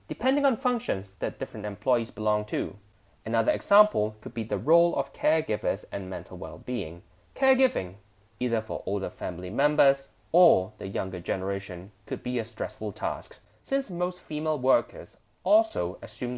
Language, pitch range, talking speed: English, 100-160 Hz, 145 wpm